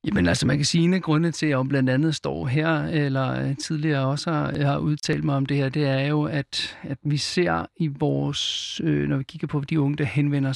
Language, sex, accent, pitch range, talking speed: Danish, male, native, 140-160 Hz, 240 wpm